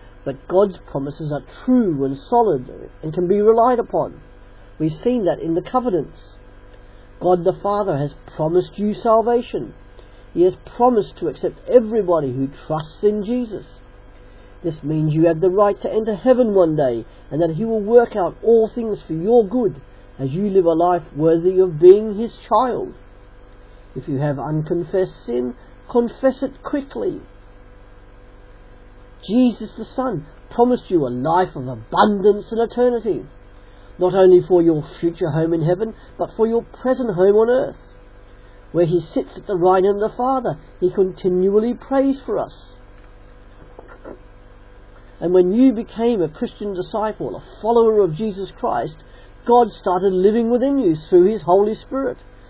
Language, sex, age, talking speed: English, male, 50-69, 155 wpm